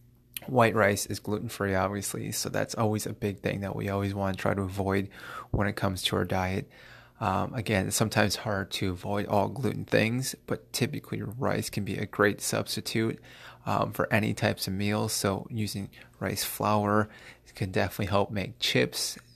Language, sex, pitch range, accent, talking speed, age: English, male, 100-120 Hz, American, 180 wpm, 20-39